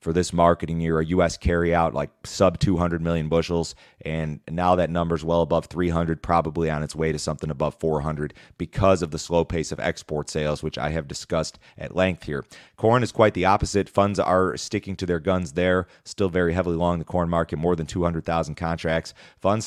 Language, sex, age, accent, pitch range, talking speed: English, male, 30-49, American, 80-95 Hz, 200 wpm